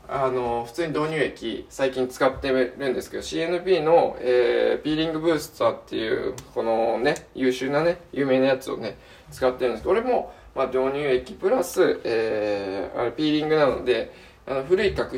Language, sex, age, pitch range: Japanese, male, 20-39, 120-175 Hz